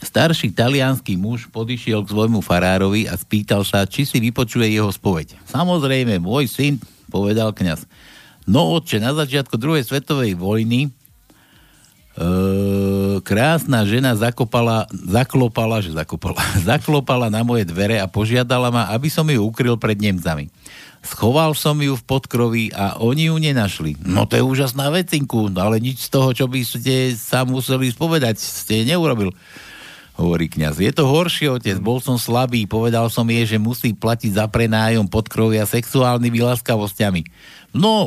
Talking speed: 150 wpm